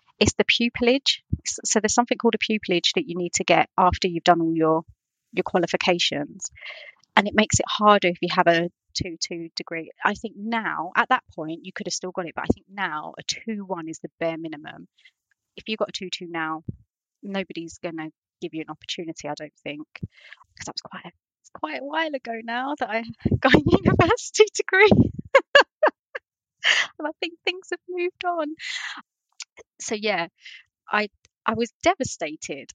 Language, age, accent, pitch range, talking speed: English, 30-49, British, 175-230 Hz, 185 wpm